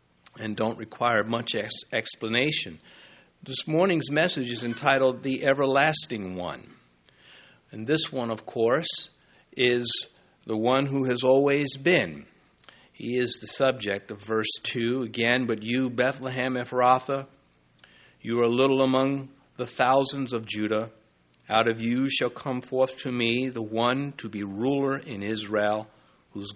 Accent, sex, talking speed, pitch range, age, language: American, male, 140 wpm, 110-140 Hz, 50-69, English